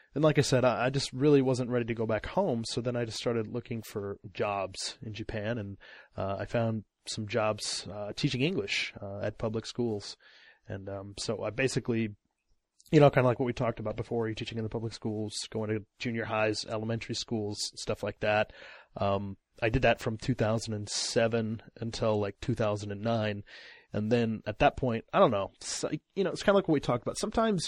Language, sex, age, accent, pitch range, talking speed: English, male, 20-39, American, 110-135 Hz, 200 wpm